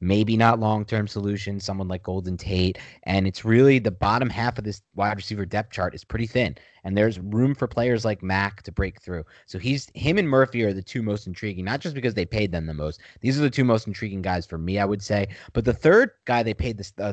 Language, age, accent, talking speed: English, 30-49, American, 250 wpm